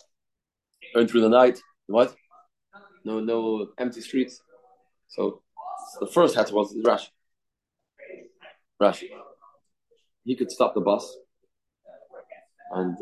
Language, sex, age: English, male, 30-49